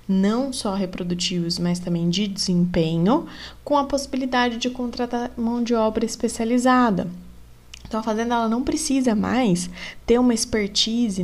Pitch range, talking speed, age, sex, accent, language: 185-235 Hz, 135 wpm, 20-39, female, Brazilian, Portuguese